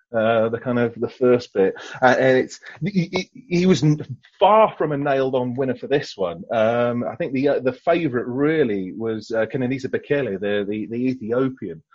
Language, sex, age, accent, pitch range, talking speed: English, male, 30-49, British, 115-160 Hz, 190 wpm